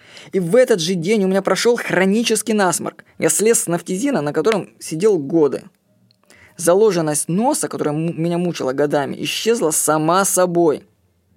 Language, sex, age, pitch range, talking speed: Russian, female, 20-39, 160-225 Hz, 150 wpm